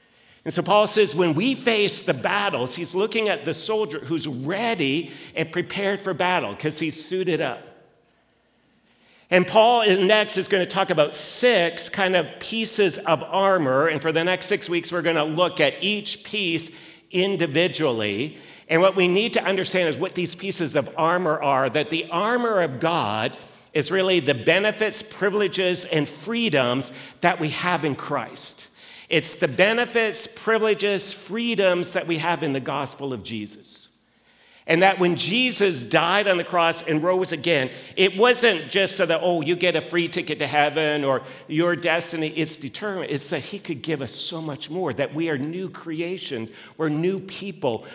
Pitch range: 160-195 Hz